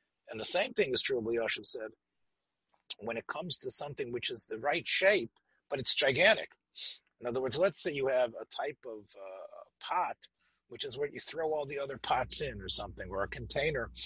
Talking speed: 205 wpm